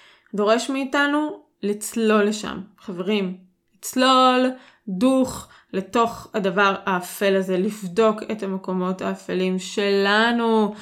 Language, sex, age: Hebrew, female, 20-39